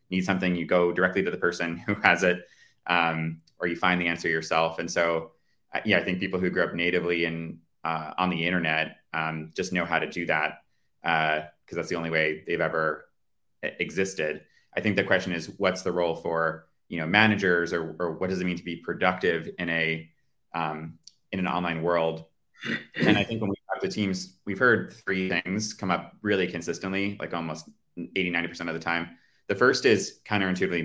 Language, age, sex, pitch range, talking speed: English, 30-49, male, 85-95 Hz, 200 wpm